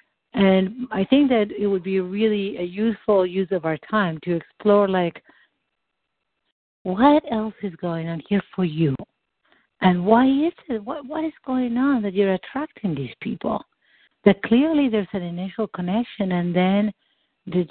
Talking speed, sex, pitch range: 165 wpm, female, 180-230 Hz